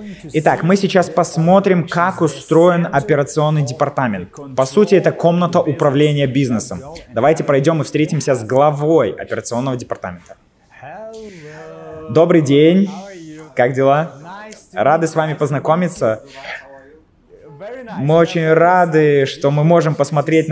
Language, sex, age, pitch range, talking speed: Russian, male, 20-39, 140-170 Hz, 110 wpm